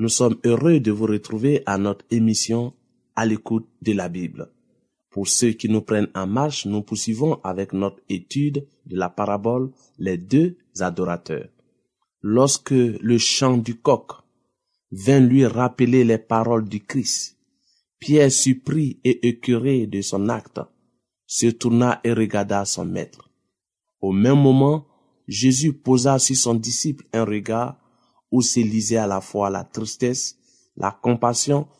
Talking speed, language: 145 wpm, French